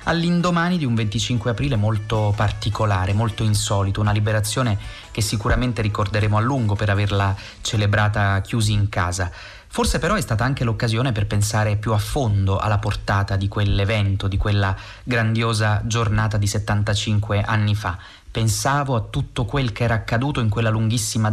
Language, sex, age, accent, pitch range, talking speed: Italian, male, 30-49, native, 105-115 Hz, 155 wpm